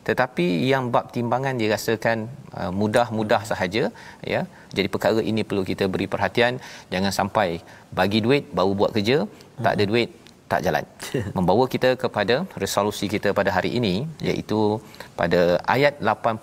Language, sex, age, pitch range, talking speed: Malayalam, male, 40-59, 100-120 Hz, 140 wpm